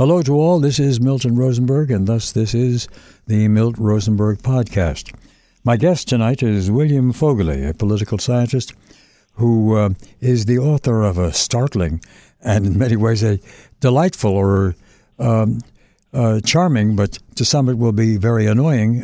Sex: male